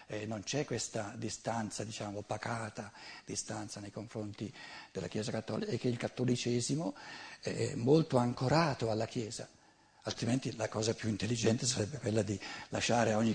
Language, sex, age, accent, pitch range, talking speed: Italian, male, 60-79, native, 110-140 Hz, 145 wpm